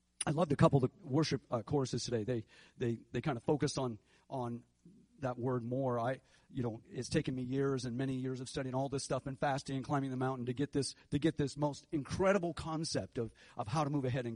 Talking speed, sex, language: 245 wpm, male, English